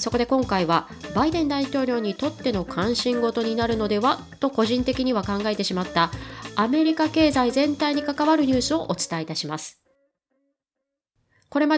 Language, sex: Japanese, female